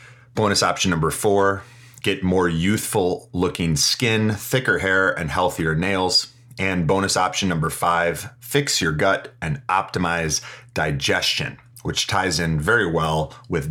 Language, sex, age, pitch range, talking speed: English, male, 30-49, 90-125 Hz, 135 wpm